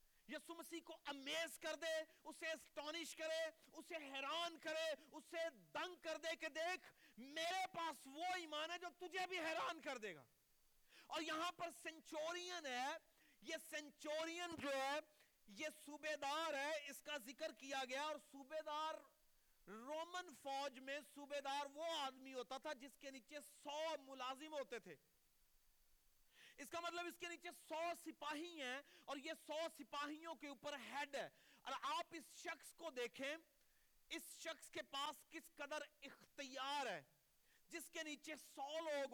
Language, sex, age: Urdu, male, 40-59